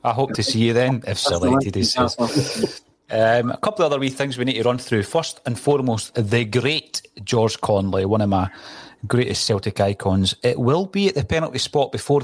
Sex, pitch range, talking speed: male, 110-130 Hz, 200 wpm